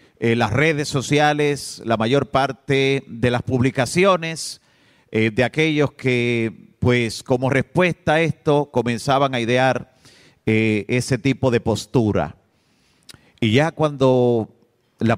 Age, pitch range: 40-59, 120-155 Hz